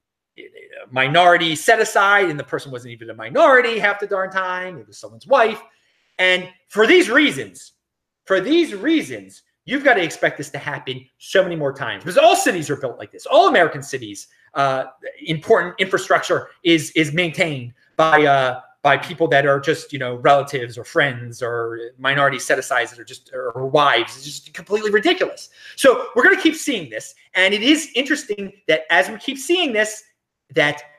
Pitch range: 145-220 Hz